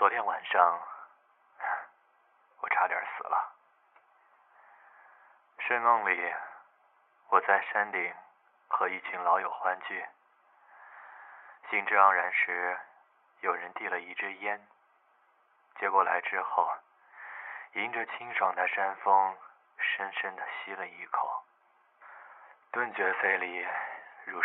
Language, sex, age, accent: Chinese, male, 20-39, native